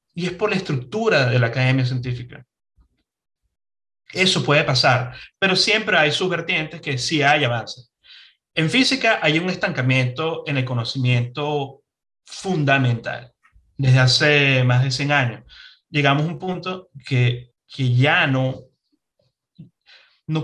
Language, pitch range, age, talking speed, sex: Spanish, 125-160 Hz, 30-49, 130 wpm, male